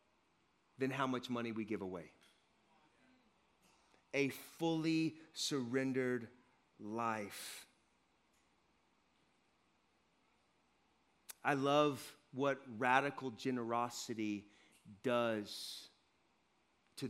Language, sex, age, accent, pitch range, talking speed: English, male, 40-59, American, 120-150 Hz, 65 wpm